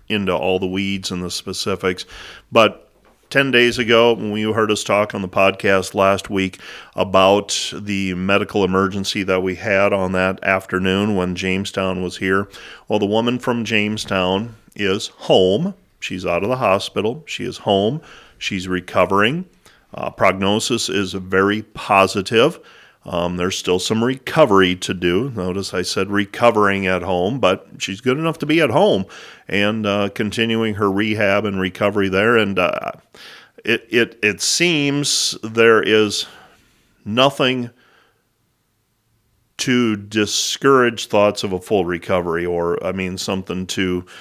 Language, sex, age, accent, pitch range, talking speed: English, male, 40-59, American, 95-110 Hz, 145 wpm